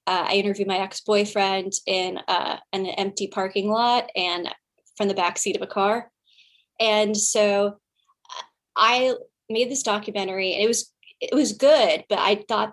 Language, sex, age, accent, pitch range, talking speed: English, female, 10-29, American, 190-220 Hz, 160 wpm